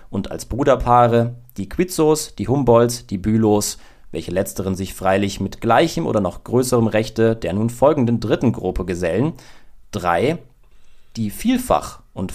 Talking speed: 140 wpm